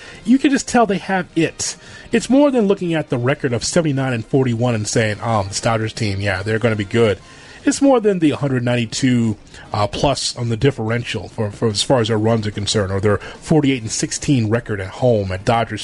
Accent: American